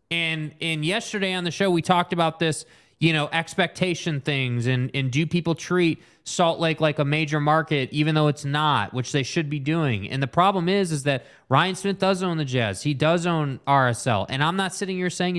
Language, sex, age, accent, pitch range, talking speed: English, male, 20-39, American, 145-175 Hz, 220 wpm